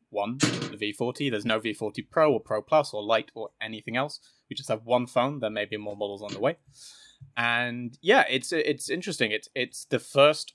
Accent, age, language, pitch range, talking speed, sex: British, 20-39, English, 115-140 Hz, 210 wpm, male